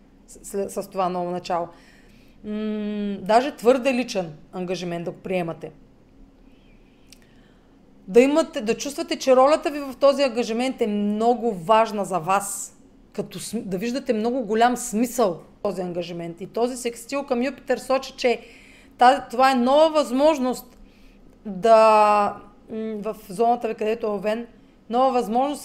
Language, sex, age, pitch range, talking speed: Bulgarian, female, 30-49, 210-260 Hz, 135 wpm